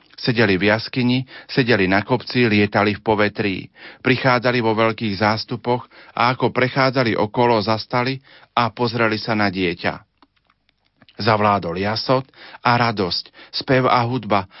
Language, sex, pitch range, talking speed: Slovak, male, 100-120 Hz, 125 wpm